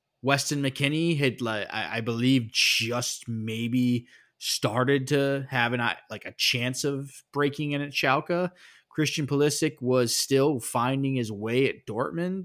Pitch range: 110-135 Hz